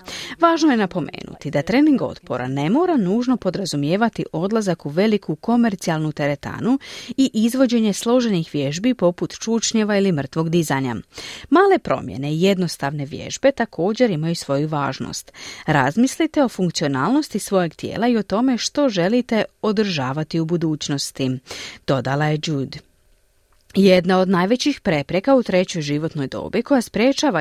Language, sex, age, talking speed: Croatian, female, 40-59, 130 wpm